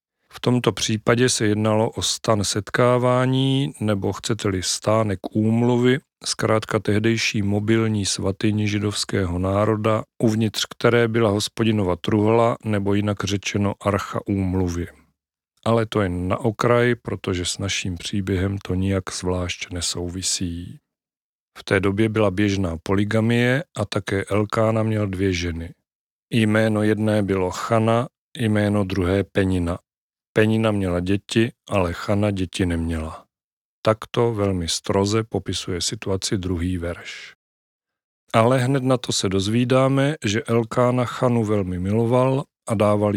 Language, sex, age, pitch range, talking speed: Czech, male, 40-59, 95-115 Hz, 120 wpm